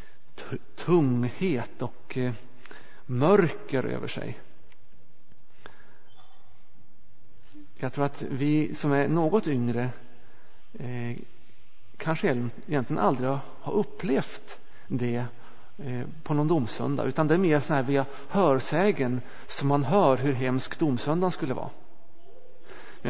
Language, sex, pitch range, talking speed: Swedish, male, 130-170 Hz, 105 wpm